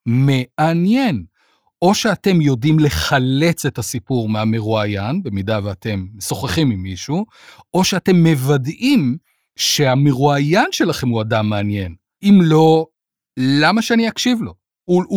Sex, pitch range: male, 120-165 Hz